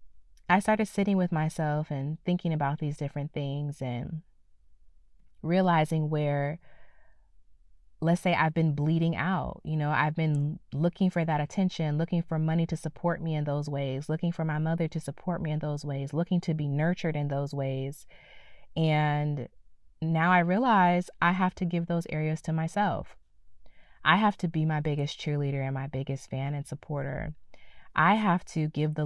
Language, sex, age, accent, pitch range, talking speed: English, female, 20-39, American, 140-165 Hz, 175 wpm